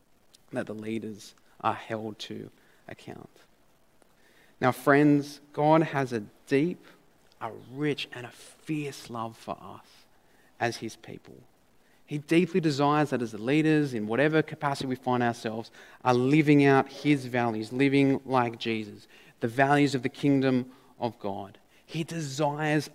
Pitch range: 125-165 Hz